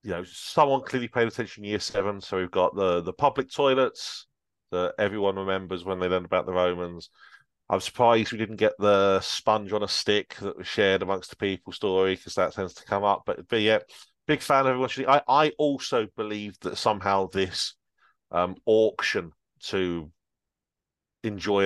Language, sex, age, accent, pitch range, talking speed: English, male, 30-49, British, 95-135 Hz, 185 wpm